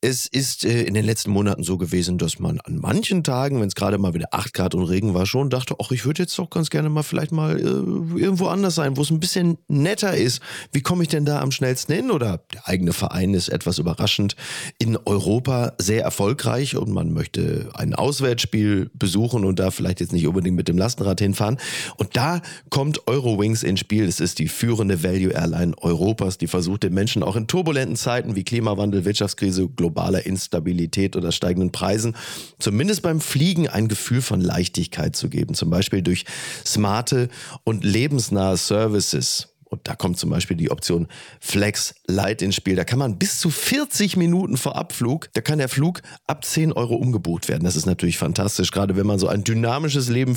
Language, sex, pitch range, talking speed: German, male, 95-145 Hz, 200 wpm